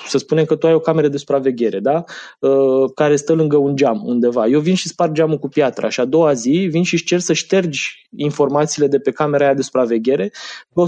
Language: Romanian